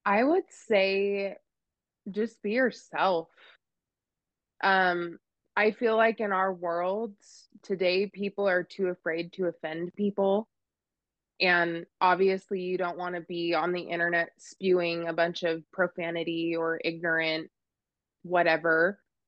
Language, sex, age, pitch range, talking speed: English, female, 20-39, 175-205 Hz, 120 wpm